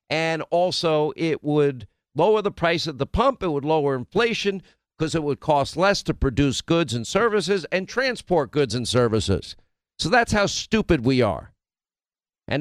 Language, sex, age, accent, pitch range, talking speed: English, male, 50-69, American, 125-175 Hz, 170 wpm